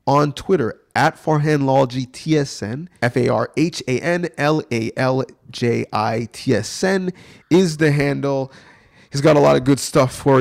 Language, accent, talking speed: English, American, 105 wpm